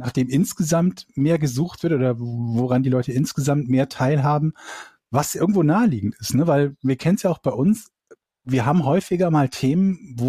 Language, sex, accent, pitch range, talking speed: German, male, German, 125-155 Hz, 180 wpm